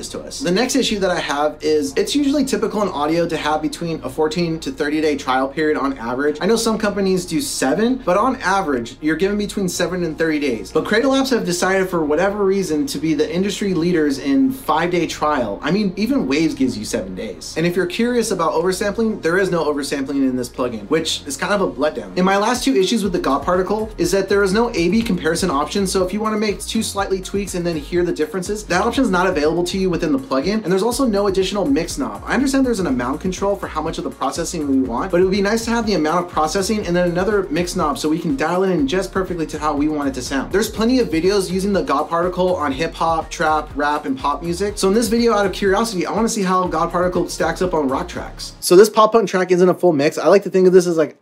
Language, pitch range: English, 155-200 Hz